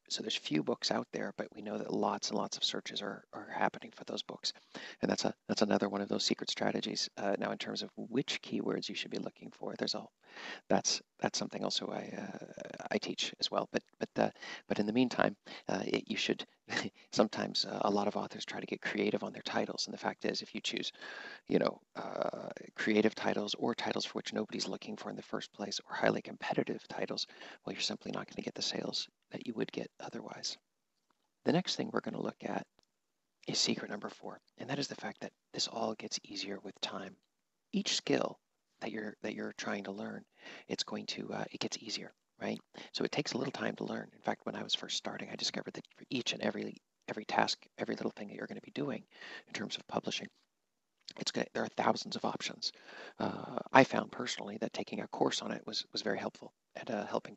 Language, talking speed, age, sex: English, 230 wpm, 40-59, male